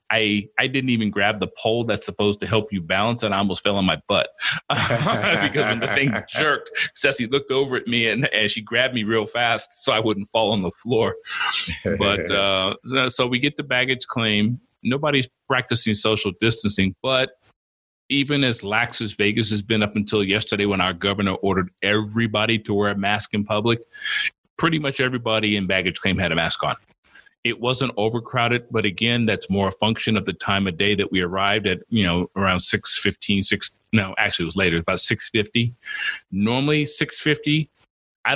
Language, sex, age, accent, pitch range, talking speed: English, male, 40-59, American, 95-120 Hz, 190 wpm